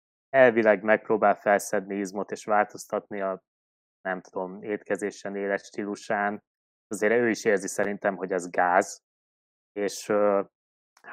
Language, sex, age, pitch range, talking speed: Hungarian, male, 20-39, 100-115 Hz, 120 wpm